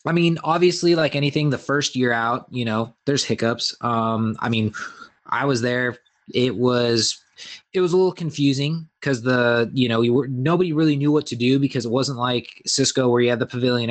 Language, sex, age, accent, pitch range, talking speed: English, male, 20-39, American, 125-150 Hz, 210 wpm